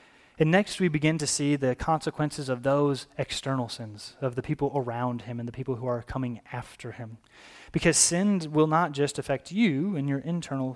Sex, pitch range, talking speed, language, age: male, 130-160 Hz, 195 wpm, English, 20-39